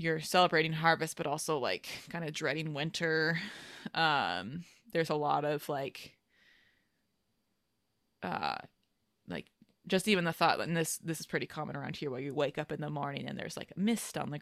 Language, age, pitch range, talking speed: English, 20-39, 145-165 Hz, 185 wpm